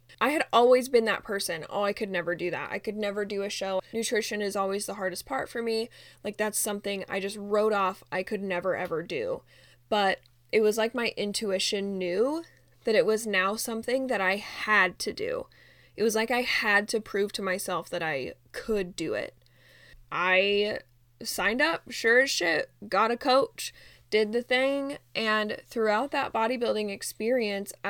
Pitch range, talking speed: 185-225 Hz, 185 wpm